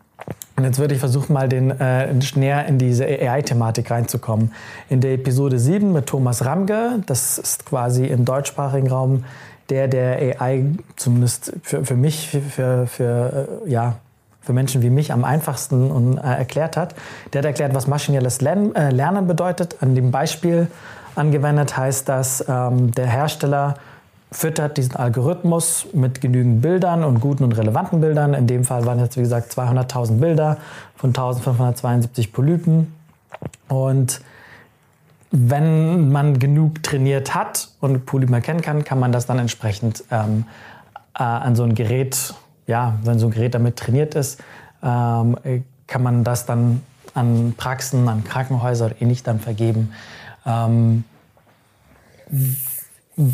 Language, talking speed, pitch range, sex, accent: German, 140 wpm, 120-145 Hz, male, German